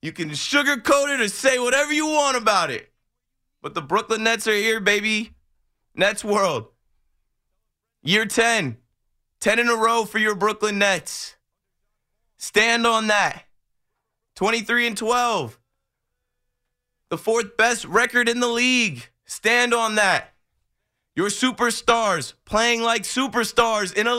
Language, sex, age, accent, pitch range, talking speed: English, male, 20-39, American, 190-230 Hz, 130 wpm